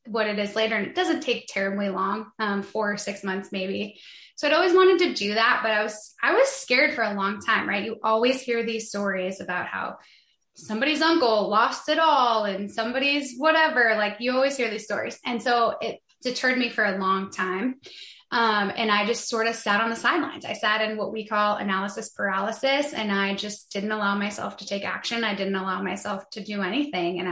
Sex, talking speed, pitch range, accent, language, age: female, 215 wpm, 205-250 Hz, American, English, 10-29